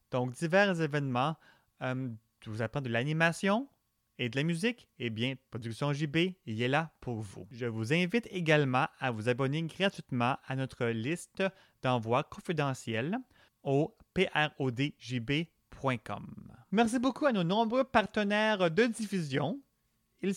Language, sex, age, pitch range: French, male, 30-49, 130-200 Hz